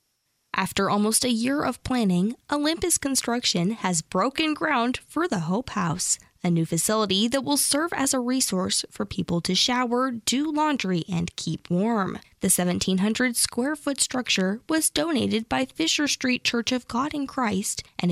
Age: 20-39